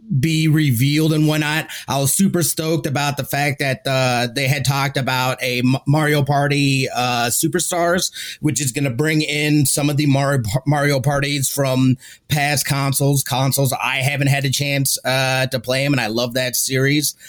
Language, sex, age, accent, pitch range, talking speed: English, male, 30-49, American, 130-155 Hz, 185 wpm